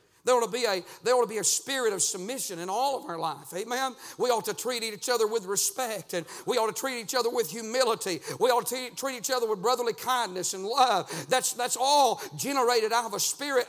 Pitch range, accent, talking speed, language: 175-255 Hz, American, 225 wpm, English